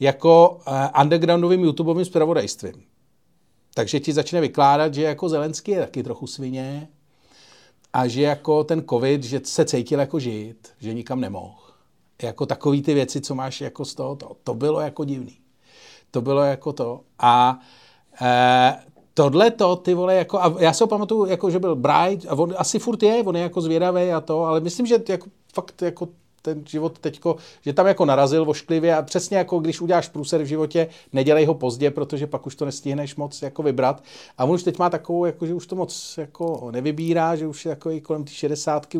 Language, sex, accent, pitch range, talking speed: Czech, male, native, 140-175 Hz, 195 wpm